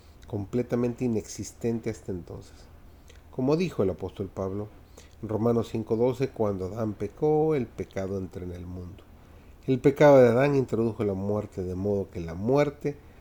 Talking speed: 150 wpm